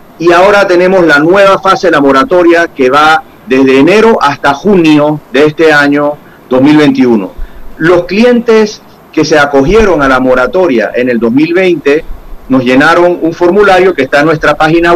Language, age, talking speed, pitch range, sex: Spanish, 40-59, 155 wpm, 140-185 Hz, male